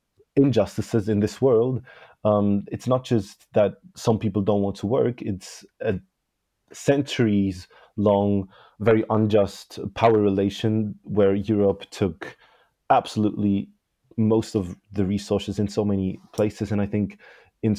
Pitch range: 95-105 Hz